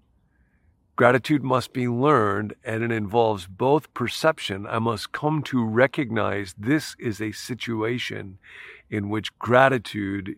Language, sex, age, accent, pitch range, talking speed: English, male, 50-69, American, 100-130 Hz, 120 wpm